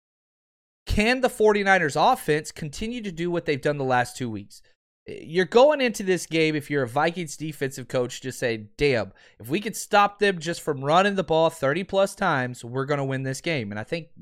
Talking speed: 205 wpm